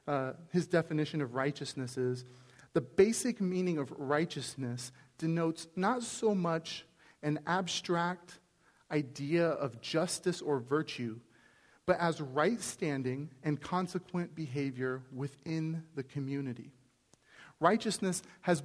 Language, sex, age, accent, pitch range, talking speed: English, male, 40-59, American, 145-185 Hz, 110 wpm